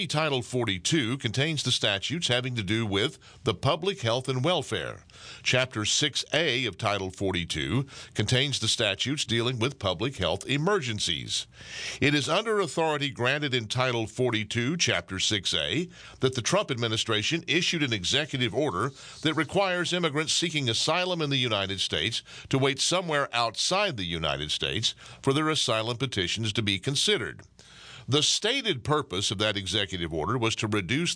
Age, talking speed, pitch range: 50-69, 150 wpm, 105-145 Hz